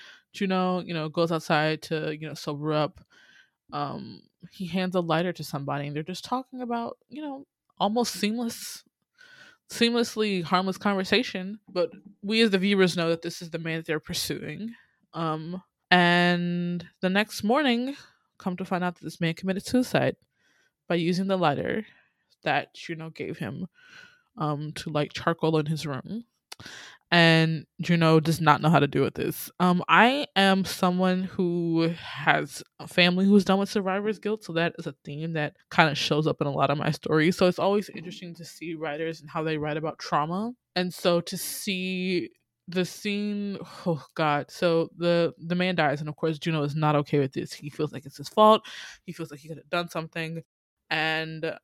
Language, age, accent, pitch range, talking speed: English, 20-39, American, 160-195 Hz, 185 wpm